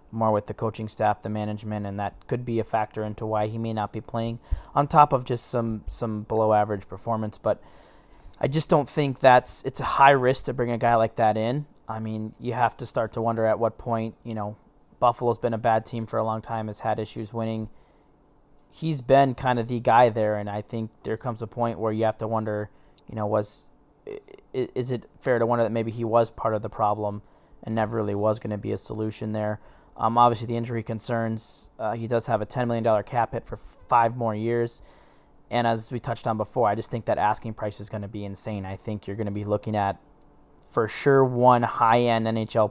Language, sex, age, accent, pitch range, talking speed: English, male, 20-39, American, 105-120 Hz, 230 wpm